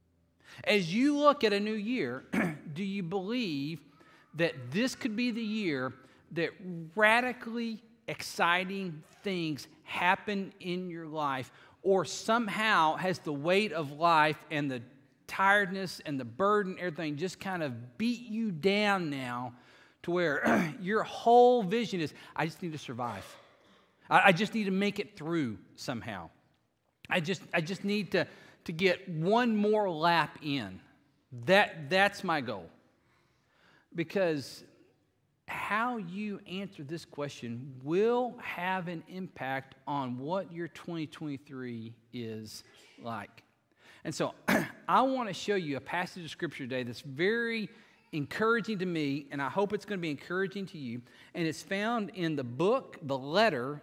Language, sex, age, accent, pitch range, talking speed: English, male, 40-59, American, 145-205 Hz, 145 wpm